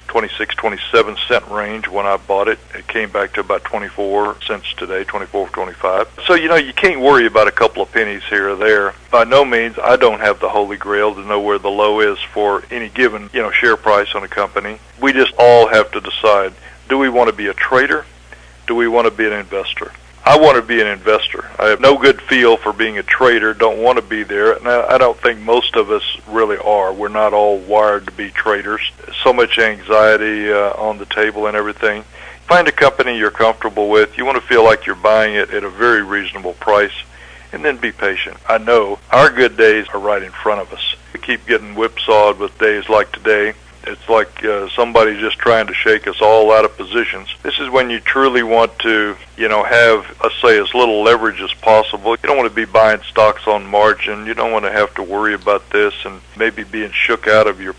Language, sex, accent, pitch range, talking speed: English, male, American, 100-115 Hz, 225 wpm